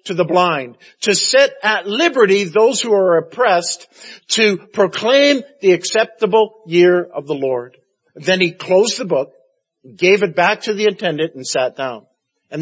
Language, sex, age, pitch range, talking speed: English, male, 50-69, 155-200 Hz, 160 wpm